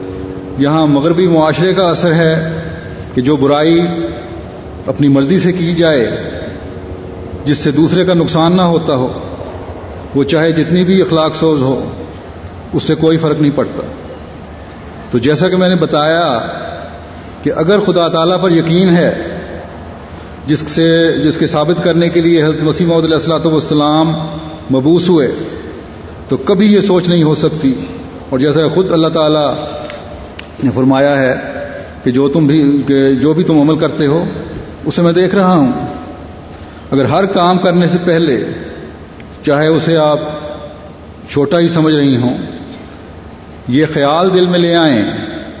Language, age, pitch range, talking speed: English, 30-49, 130-170 Hz, 125 wpm